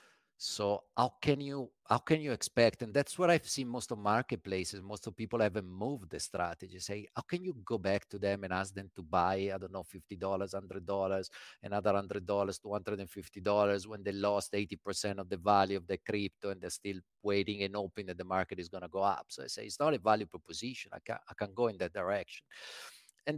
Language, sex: English, male